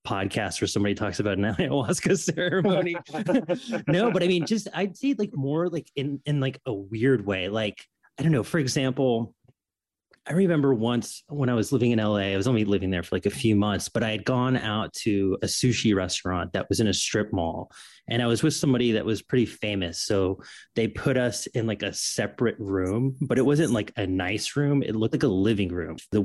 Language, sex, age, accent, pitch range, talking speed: English, male, 30-49, American, 105-135 Hz, 220 wpm